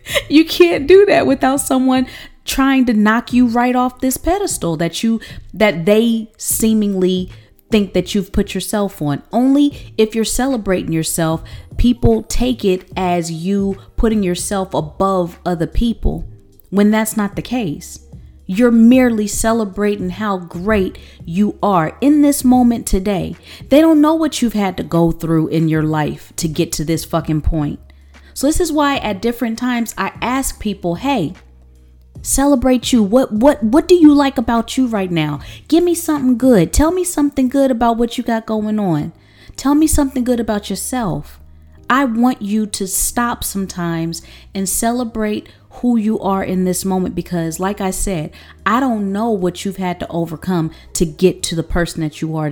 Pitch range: 175-245 Hz